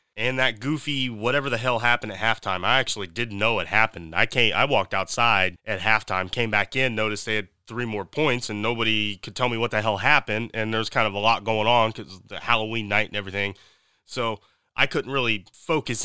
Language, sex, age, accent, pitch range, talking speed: English, male, 30-49, American, 105-125 Hz, 220 wpm